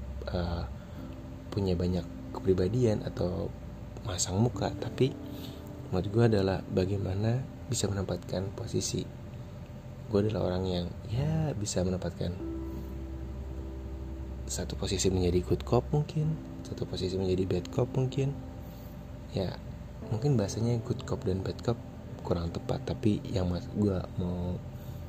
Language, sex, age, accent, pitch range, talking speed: Indonesian, male, 20-39, native, 90-115 Hz, 115 wpm